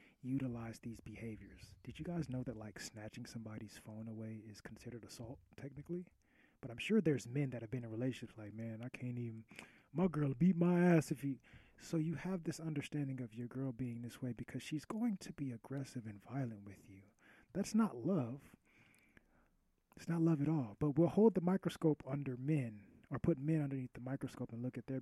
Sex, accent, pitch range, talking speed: male, American, 120-150 Hz, 205 wpm